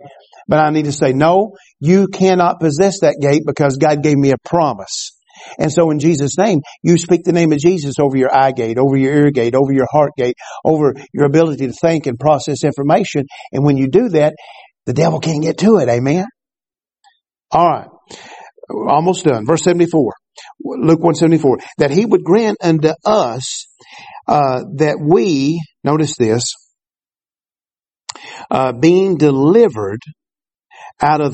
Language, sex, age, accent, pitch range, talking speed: English, male, 50-69, American, 140-175 Hz, 160 wpm